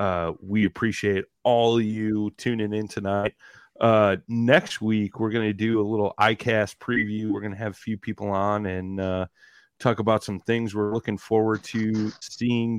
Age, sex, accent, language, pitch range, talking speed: 30-49, male, American, English, 95-110 Hz, 185 wpm